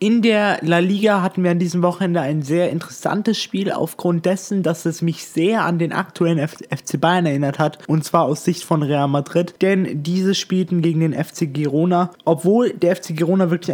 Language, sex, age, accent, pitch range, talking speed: German, male, 20-39, German, 150-180 Hz, 195 wpm